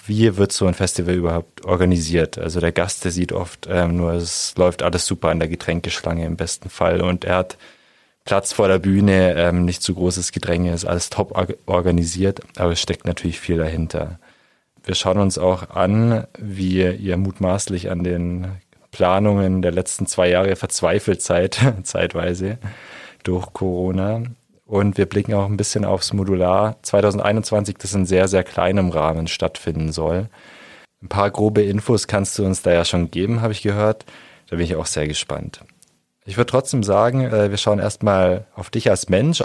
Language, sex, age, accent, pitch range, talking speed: German, male, 30-49, German, 90-105 Hz, 175 wpm